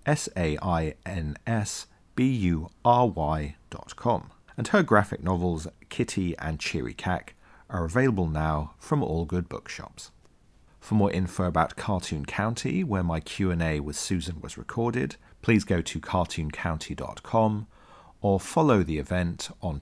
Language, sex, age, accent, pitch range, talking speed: English, male, 40-59, British, 80-105 Hz, 115 wpm